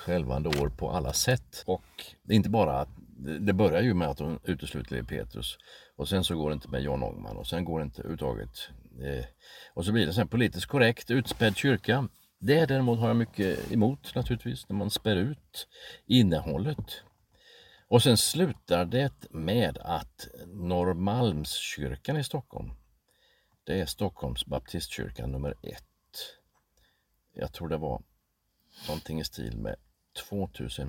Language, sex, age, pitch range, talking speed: Swedish, male, 50-69, 75-115 Hz, 155 wpm